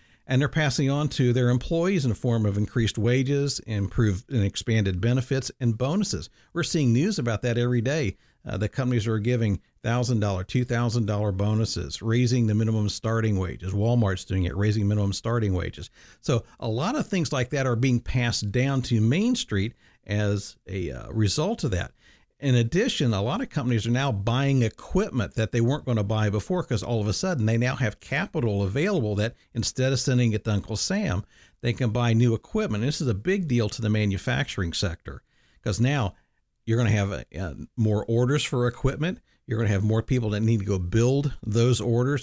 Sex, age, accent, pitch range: male, 50-69, American, 105-130 Hz